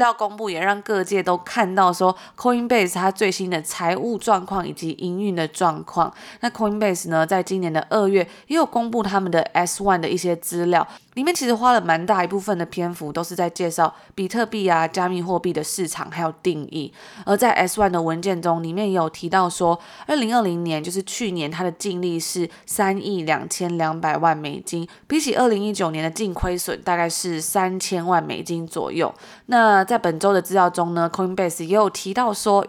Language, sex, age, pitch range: Chinese, female, 20-39, 170-205 Hz